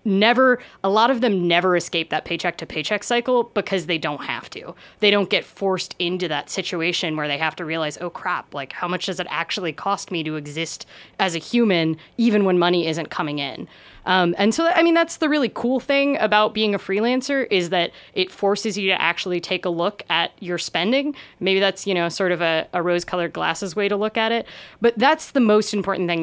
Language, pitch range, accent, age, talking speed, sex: English, 170-205 Hz, American, 20-39, 225 wpm, female